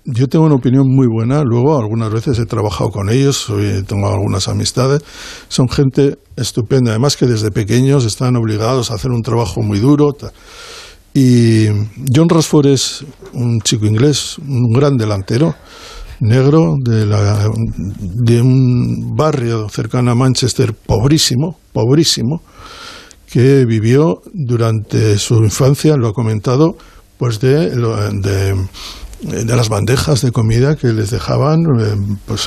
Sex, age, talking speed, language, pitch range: male, 60-79, 135 wpm, Spanish, 110-140 Hz